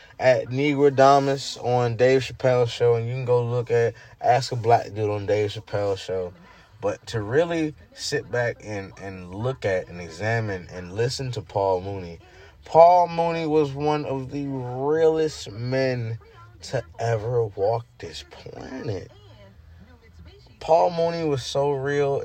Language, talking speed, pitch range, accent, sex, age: English, 150 wpm, 105-140 Hz, American, male, 20-39